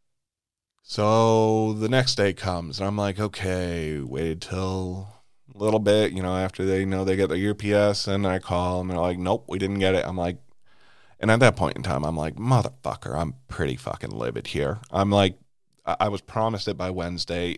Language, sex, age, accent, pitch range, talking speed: English, male, 30-49, American, 90-105 Hz, 200 wpm